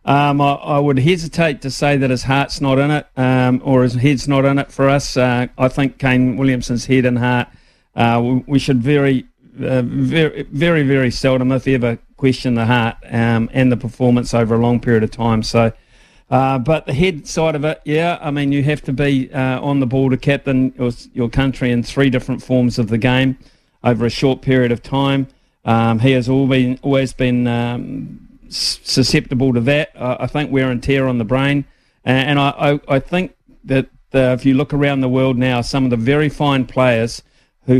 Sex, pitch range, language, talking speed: male, 125-140 Hz, English, 205 wpm